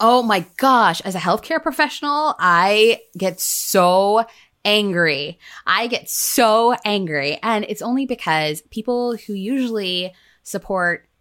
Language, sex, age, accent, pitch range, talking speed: English, female, 20-39, American, 155-215 Hz, 125 wpm